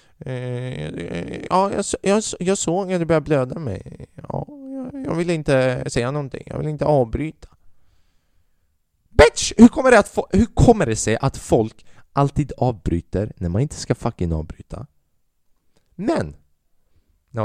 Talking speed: 140 wpm